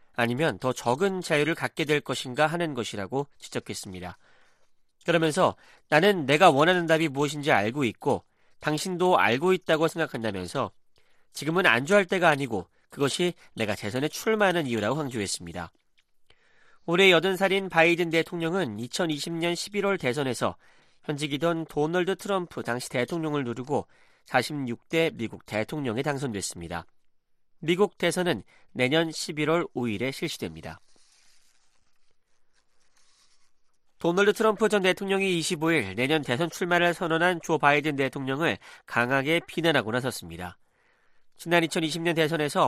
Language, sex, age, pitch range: Korean, male, 40-59, 130-175 Hz